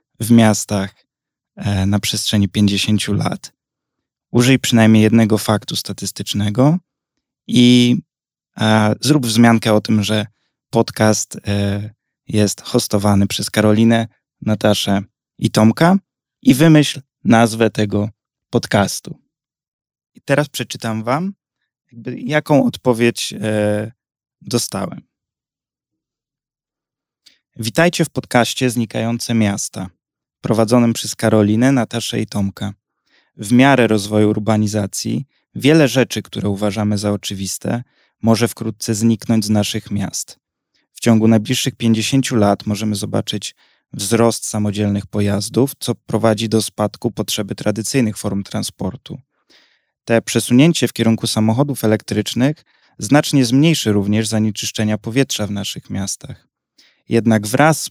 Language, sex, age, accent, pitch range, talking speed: Polish, male, 20-39, native, 105-125 Hz, 100 wpm